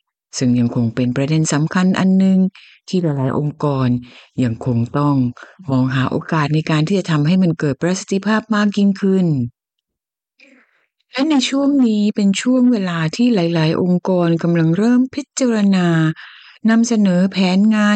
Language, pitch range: Thai, 145-210 Hz